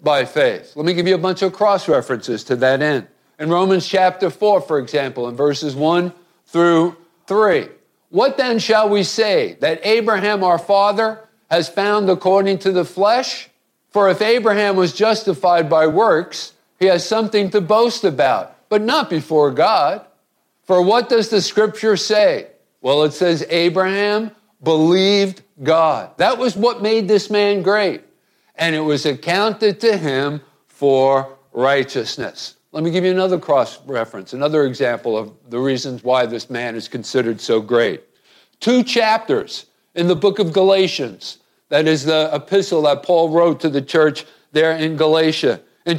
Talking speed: 155 wpm